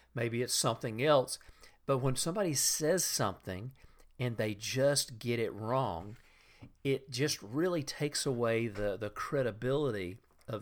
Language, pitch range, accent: English, 125-185 Hz, American